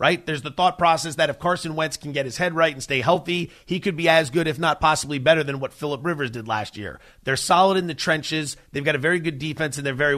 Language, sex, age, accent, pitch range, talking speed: English, male, 30-49, American, 140-185 Hz, 275 wpm